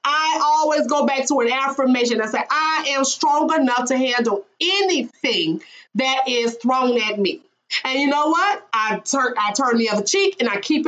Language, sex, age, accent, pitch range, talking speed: English, female, 30-49, American, 245-330 Hz, 190 wpm